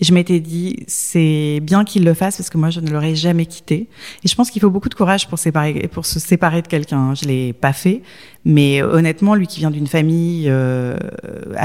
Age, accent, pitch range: 30-49, French, 150-185 Hz